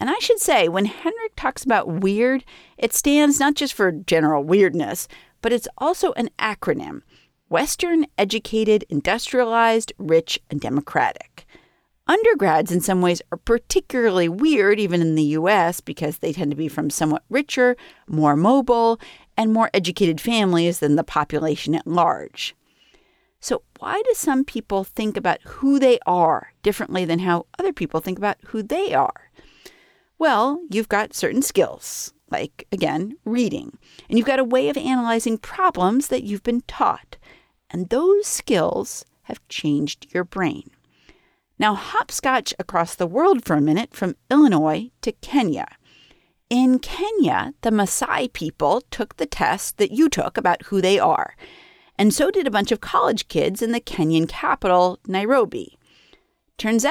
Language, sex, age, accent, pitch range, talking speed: English, female, 50-69, American, 180-275 Hz, 155 wpm